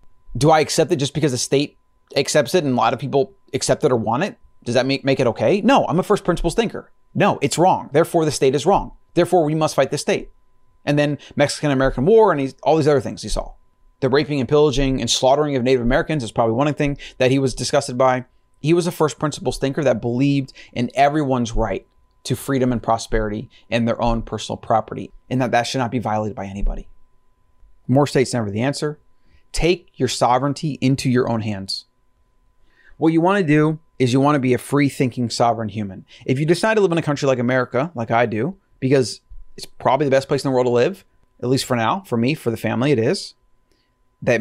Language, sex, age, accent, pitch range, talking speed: English, male, 30-49, American, 120-145 Hz, 225 wpm